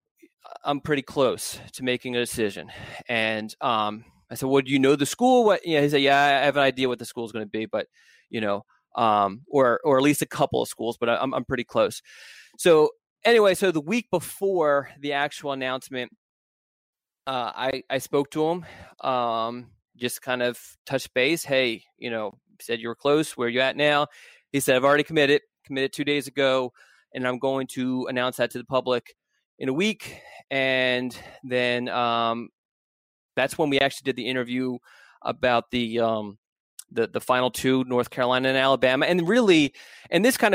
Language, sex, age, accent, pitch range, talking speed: English, male, 20-39, American, 125-155 Hz, 195 wpm